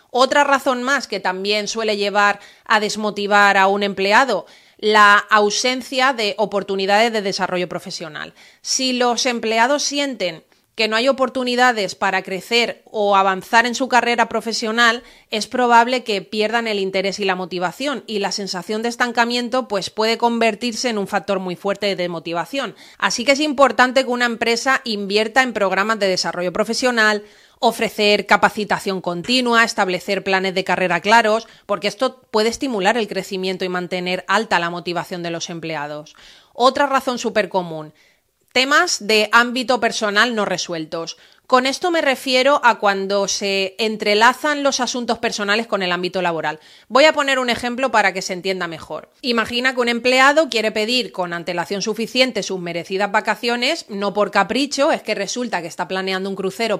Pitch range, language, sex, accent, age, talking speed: 190-245 Hz, Spanish, female, Spanish, 30-49, 160 wpm